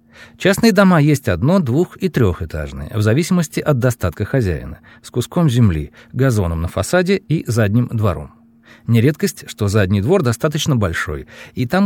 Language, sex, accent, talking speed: Russian, male, native, 145 wpm